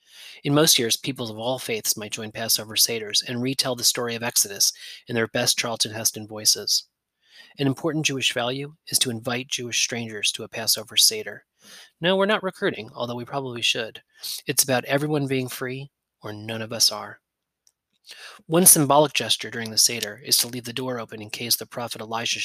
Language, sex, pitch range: English, male, 110-130 Hz